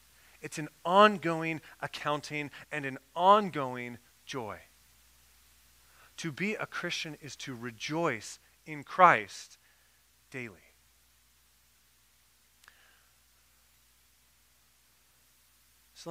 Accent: American